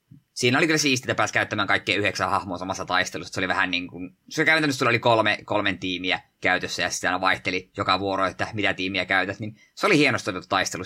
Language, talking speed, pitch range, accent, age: Finnish, 210 wpm, 95-120 Hz, native, 20-39